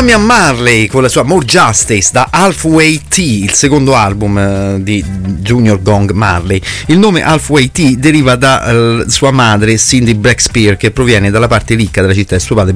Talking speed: 175 wpm